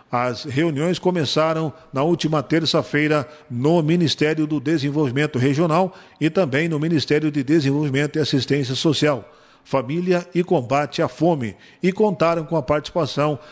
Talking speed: 135 wpm